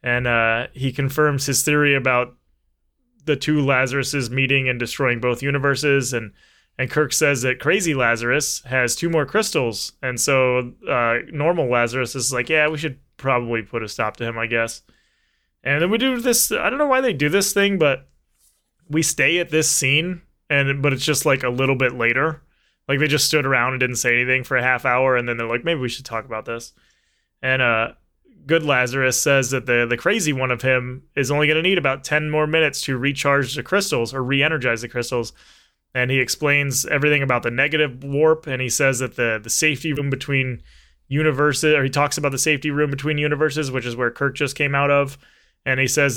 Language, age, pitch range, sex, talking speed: English, 20-39, 125-150 Hz, male, 210 wpm